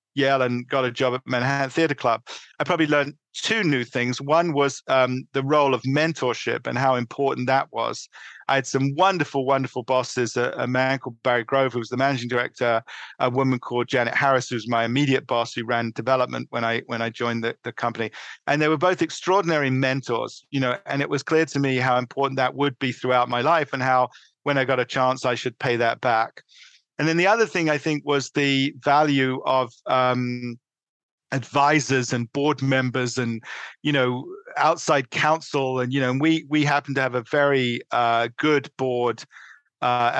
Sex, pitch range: male, 125-145 Hz